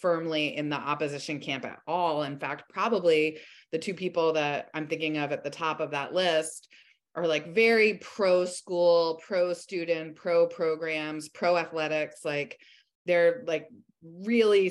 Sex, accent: female, American